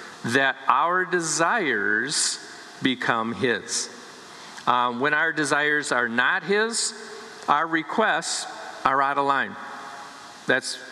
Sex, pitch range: male, 125-165 Hz